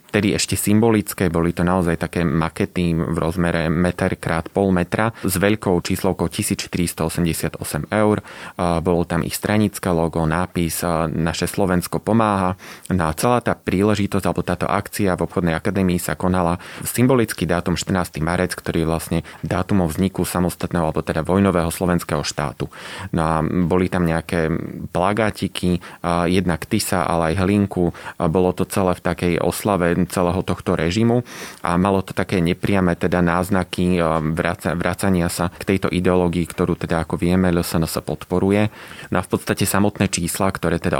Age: 30-49